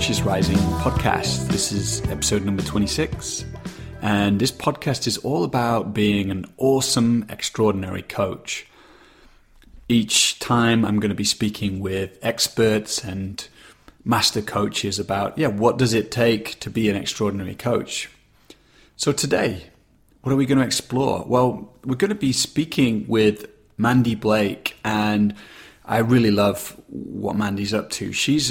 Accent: British